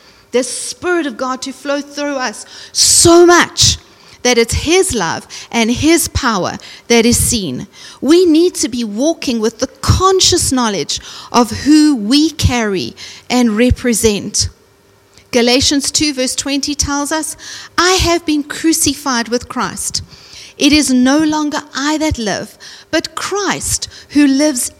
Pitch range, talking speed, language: 235-310 Hz, 140 wpm, English